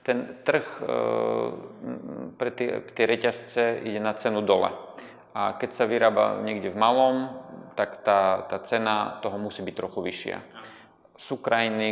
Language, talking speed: Slovak, 135 wpm